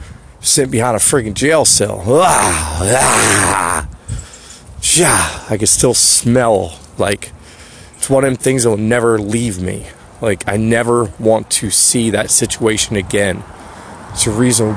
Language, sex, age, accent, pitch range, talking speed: English, male, 30-49, American, 100-120 Hz, 145 wpm